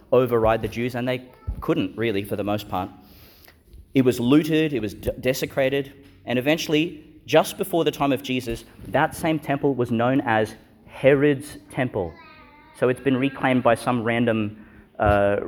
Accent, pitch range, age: Australian, 105-140 Hz, 30-49